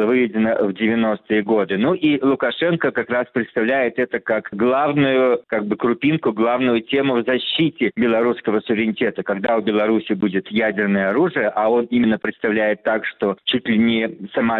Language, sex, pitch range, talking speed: Russian, male, 110-130 Hz, 155 wpm